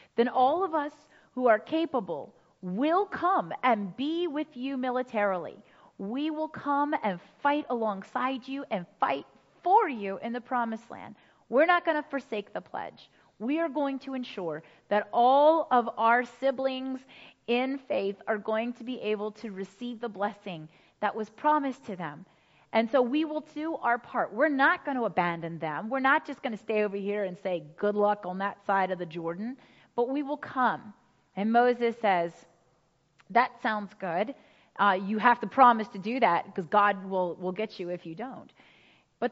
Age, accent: 30-49, American